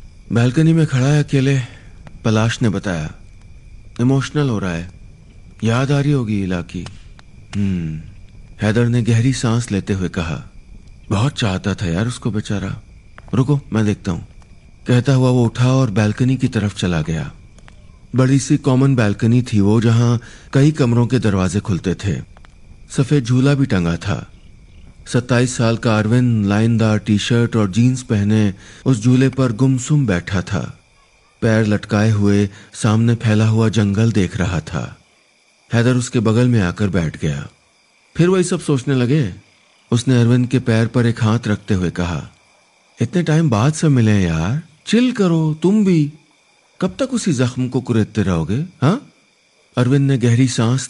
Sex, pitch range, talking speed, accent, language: male, 100-130 Hz, 155 wpm, native, Hindi